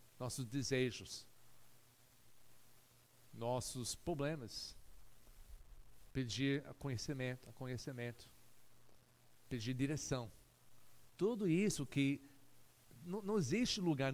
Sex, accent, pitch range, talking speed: male, Brazilian, 120-145 Hz, 65 wpm